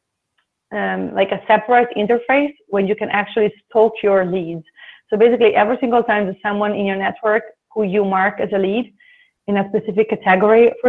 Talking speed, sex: 180 wpm, female